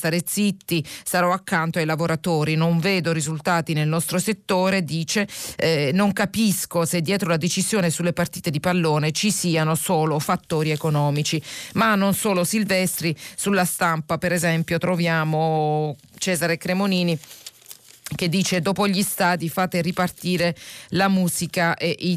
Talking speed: 140 wpm